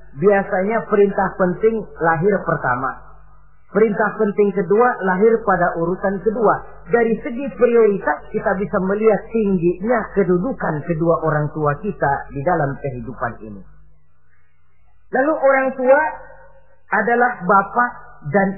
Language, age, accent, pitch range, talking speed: Indonesian, 40-59, native, 185-220 Hz, 110 wpm